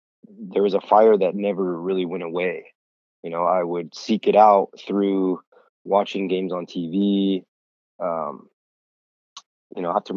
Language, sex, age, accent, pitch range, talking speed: English, male, 20-39, American, 90-110 Hz, 150 wpm